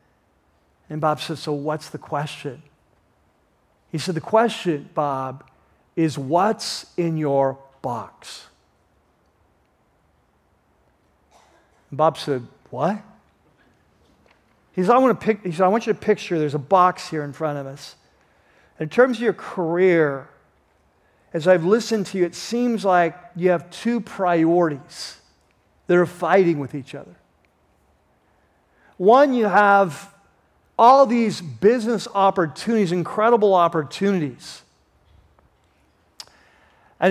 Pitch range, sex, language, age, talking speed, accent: 130-195 Hz, male, English, 50-69, 120 wpm, American